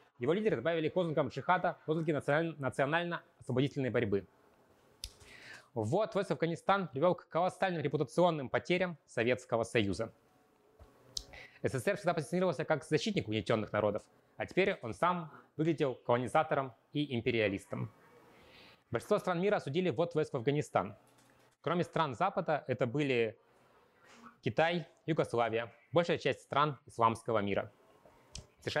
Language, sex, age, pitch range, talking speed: Russian, male, 20-39, 120-170 Hz, 115 wpm